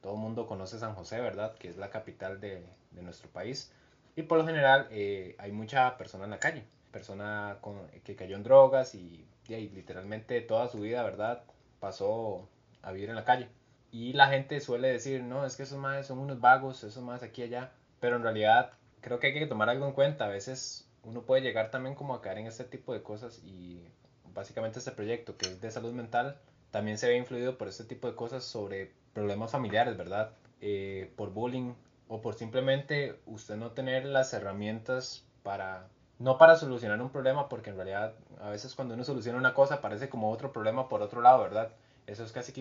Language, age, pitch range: Spanish, 20-39, 105-130 Hz